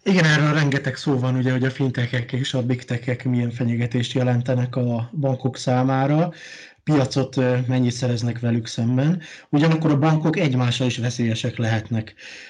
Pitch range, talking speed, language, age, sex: 125-140 Hz, 145 wpm, Hungarian, 20-39, male